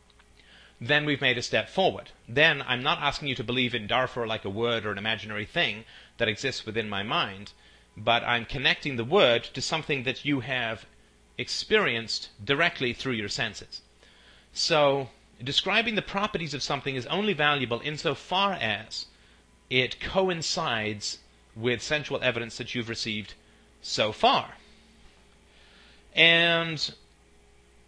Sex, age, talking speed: male, 30-49, 140 wpm